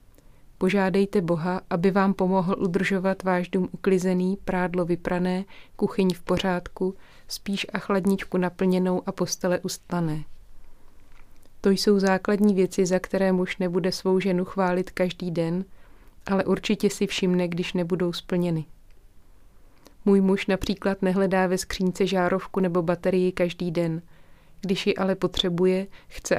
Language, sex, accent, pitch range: Czech, female, native, 175-190 Hz